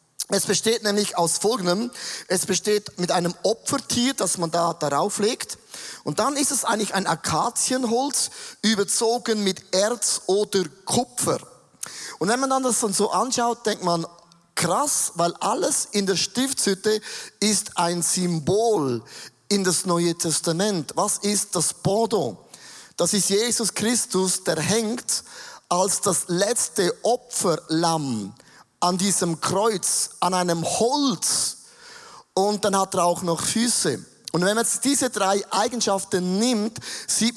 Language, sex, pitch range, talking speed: German, male, 175-225 Hz, 135 wpm